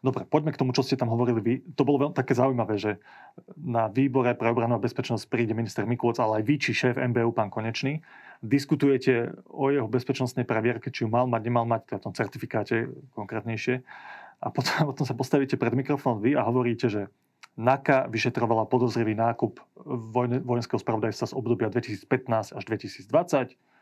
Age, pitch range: 30-49, 115-135 Hz